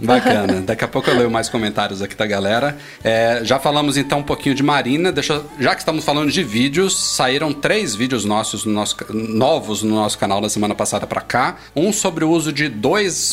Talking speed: 210 wpm